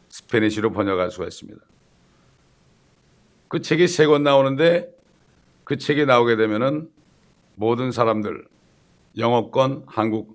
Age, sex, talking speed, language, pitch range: 60-79, male, 95 wpm, English, 110-140 Hz